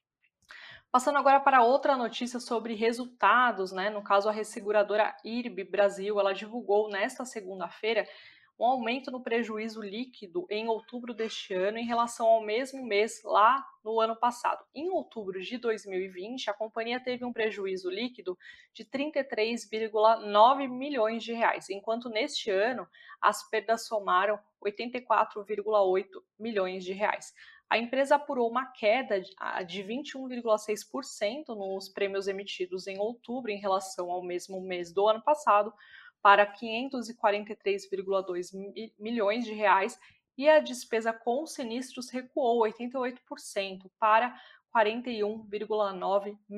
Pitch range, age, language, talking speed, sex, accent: 205-250 Hz, 20-39, Portuguese, 125 wpm, female, Brazilian